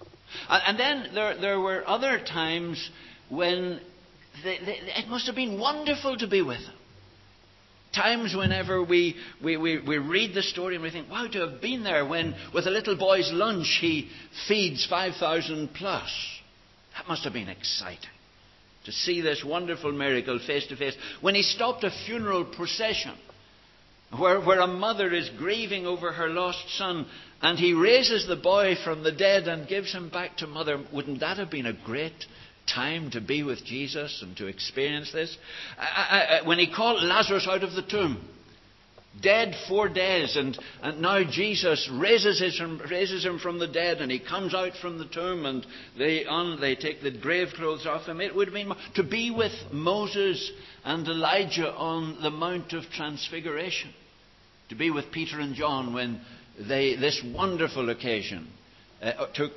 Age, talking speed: 60-79, 170 wpm